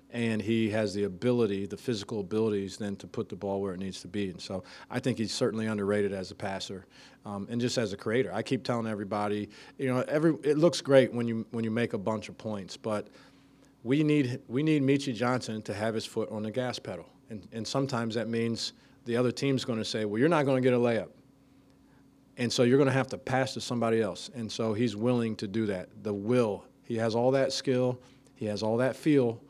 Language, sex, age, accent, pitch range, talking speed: English, male, 40-59, American, 105-125 Hz, 240 wpm